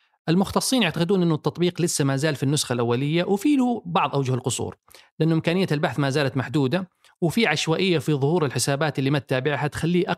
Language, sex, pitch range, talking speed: Arabic, male, 140-180 Hz, 175 wpm